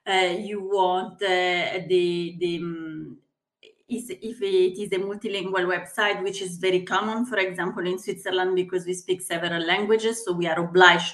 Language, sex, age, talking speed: English, female, 30-49, 165 wpm